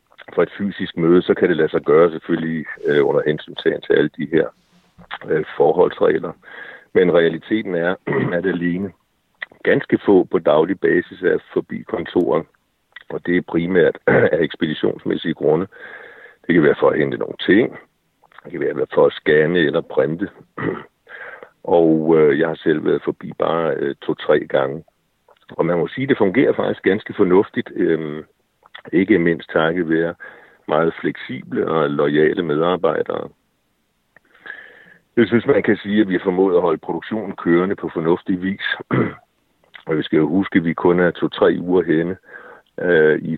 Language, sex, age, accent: Danish, male, 60-79, native